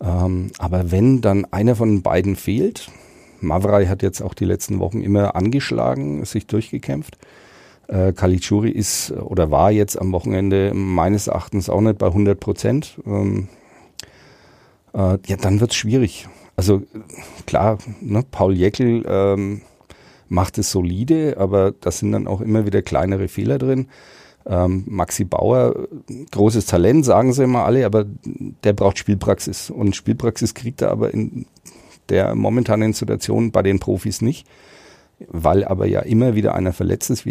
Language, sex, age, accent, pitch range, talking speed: German, male, 40-59, German, 95-115 Hz, 155 wpm